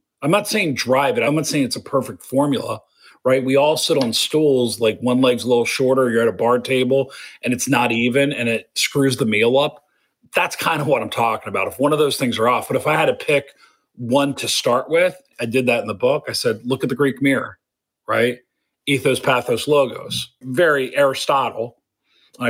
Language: English